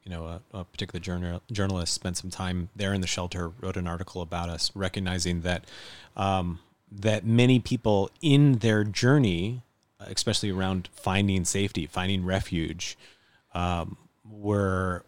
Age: 30-49